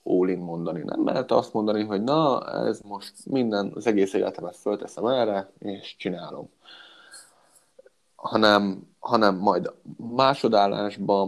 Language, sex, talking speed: Hungarian, male, 115 wpm